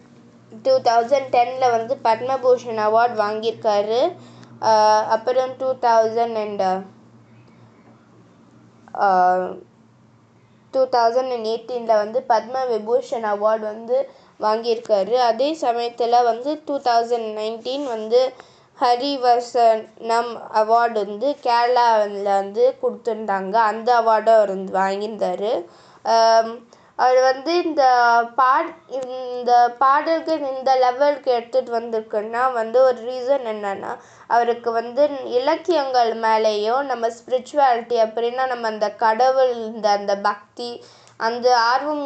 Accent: native